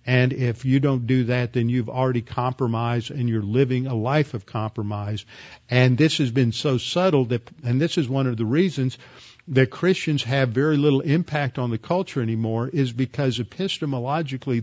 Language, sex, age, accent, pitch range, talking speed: English, male, 50-69, American, 120-140 Hz, 180 wpm